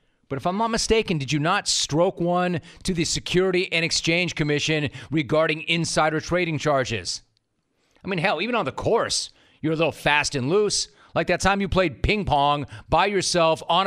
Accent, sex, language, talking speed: American, male, English, 185 wpm